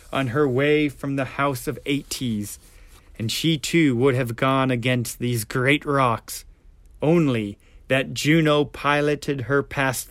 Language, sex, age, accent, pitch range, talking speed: English, male, 30-49, American, 95-145 Hz, 140 wpm